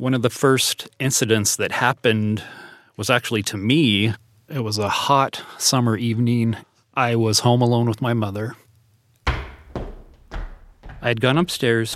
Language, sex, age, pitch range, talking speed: English, male, 40-59, 85-115 Hz, 140 wpm